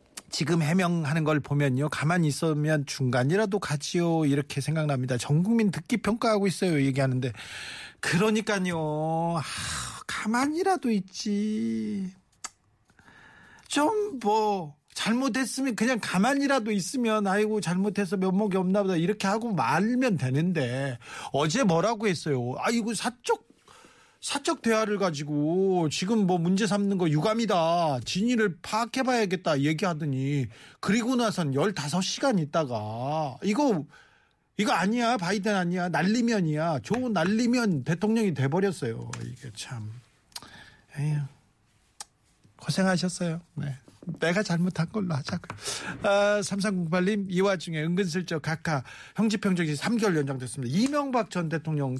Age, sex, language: 40-59, male, Korean